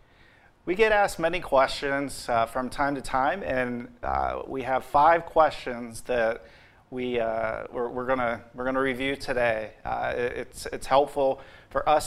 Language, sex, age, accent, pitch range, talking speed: English, male, 40-59, American, 125-150 Hz, 170 wpm